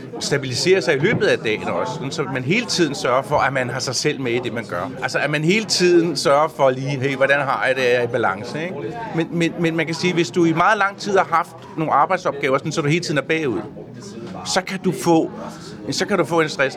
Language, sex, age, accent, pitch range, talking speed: Danish, male, 40-59, native, 130-175 Hz, 265 wpm